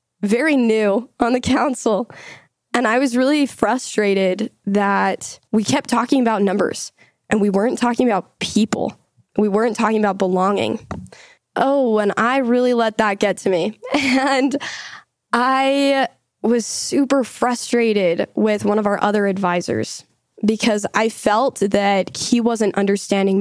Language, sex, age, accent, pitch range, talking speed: English, female, 10-29, American, 195-250 Hz, 140 wpm